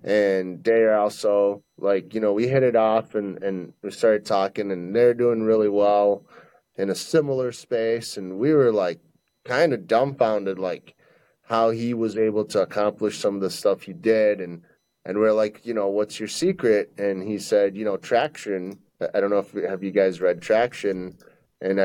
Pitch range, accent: 100-125 Hz, American